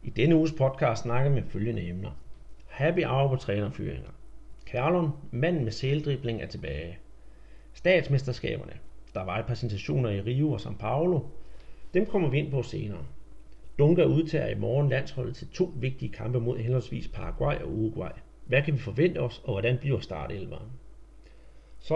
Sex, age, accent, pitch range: male, 40-59, native, 115-155 Hz